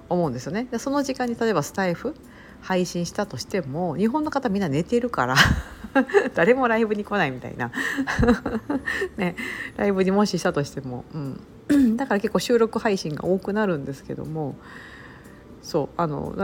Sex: female